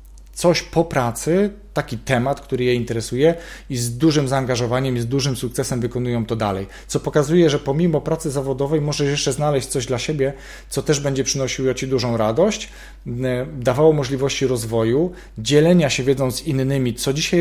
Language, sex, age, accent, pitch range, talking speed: Polish, male, 40-59, native, 120-155 Hz, 165 wpm